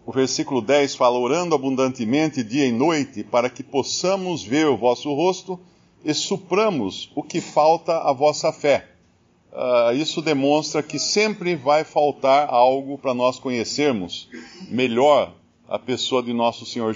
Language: Portuguese